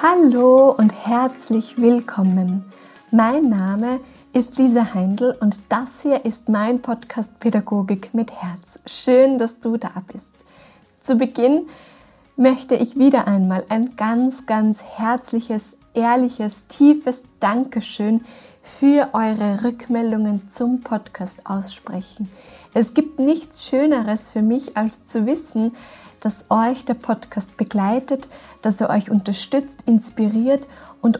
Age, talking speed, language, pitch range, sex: 20-39, 120 wpm, German, 215-255 Hz, female